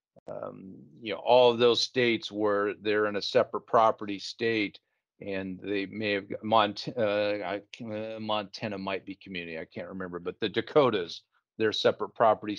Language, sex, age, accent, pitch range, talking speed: English, male, 40-59, American, 105-135 Hz, 165 wpm